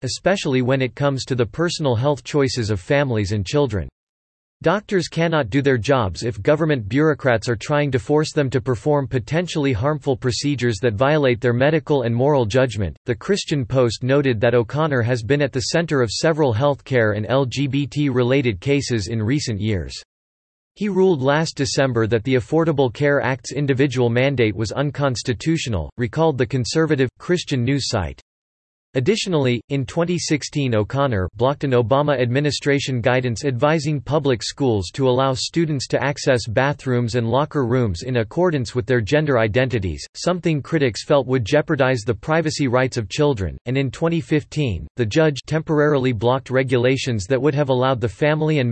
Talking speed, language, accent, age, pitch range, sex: 160 wpm, English, American, 40-59, 120-145 Hz, male